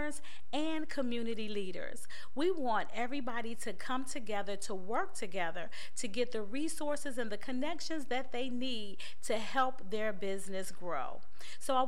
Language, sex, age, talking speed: English, female, 40-59, 145 wpm